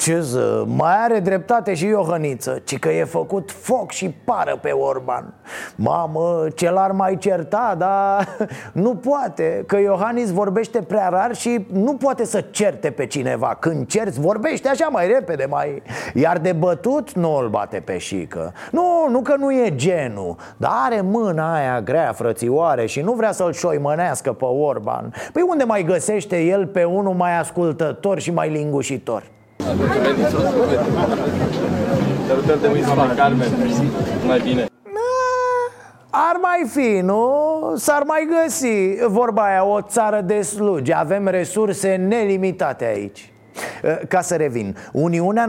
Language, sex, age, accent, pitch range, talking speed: Romanian, male, 30-49, native, 165-235 Hz, 135 wpm